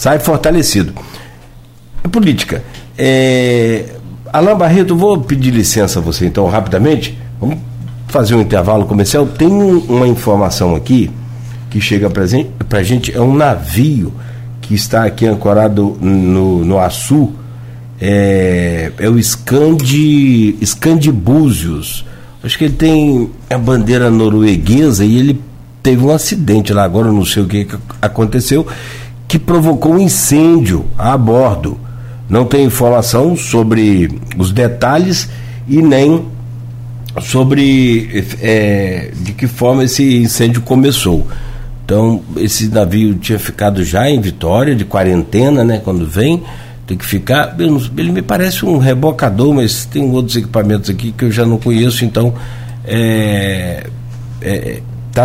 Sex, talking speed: male, 130 wpm